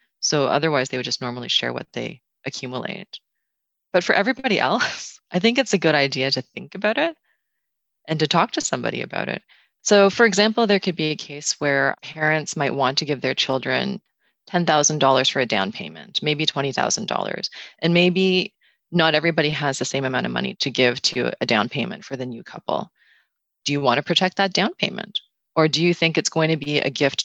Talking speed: 205 wpm